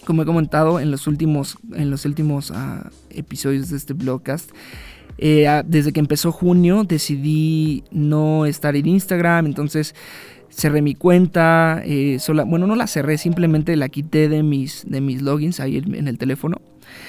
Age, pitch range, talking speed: 20-39, 140-165 Hz, 150 wpm